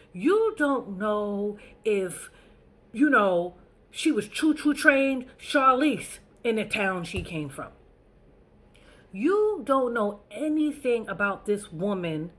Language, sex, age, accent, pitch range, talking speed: English, female, 40-59, American, 170-230 Hz, 115 wpm